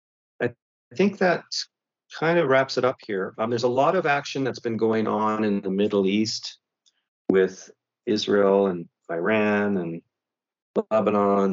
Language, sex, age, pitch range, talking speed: English, male, 40-59, 95-120 Hz, 150 wpm